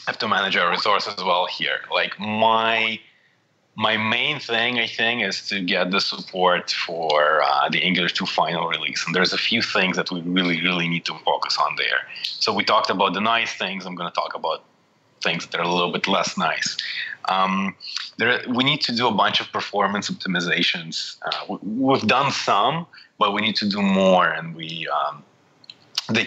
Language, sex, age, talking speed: English, male, 30-49, 195 wpm